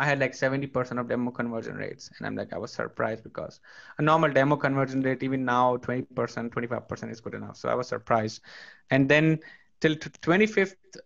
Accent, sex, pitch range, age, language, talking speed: Indian, male, 125-160 Hz, 20-39, English, 190 wpm